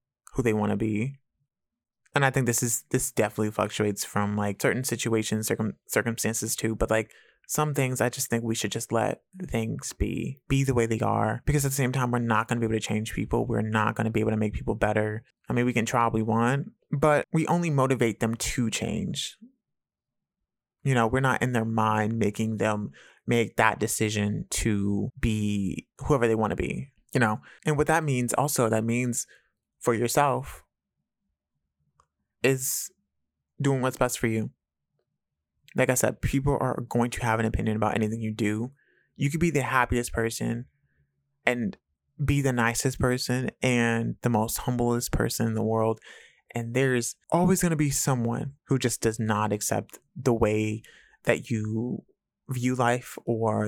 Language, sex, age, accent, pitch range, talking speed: English, male, 20-39, American, 110-130 Hz, 185 wpm